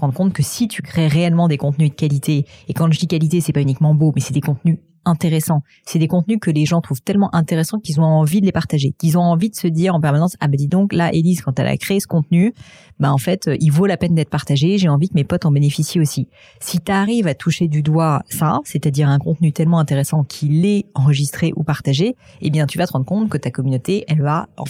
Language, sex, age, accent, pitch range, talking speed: French, female, 30-49, French, 140-170 Hz, 260 wpm